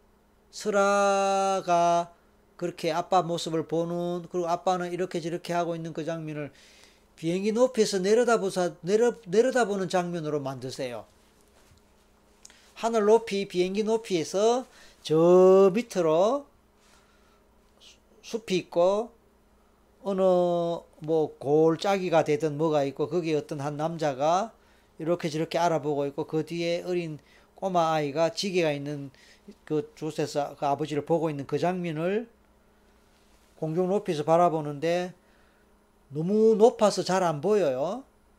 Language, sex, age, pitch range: Korean, male, 40-59, 160-205 Hz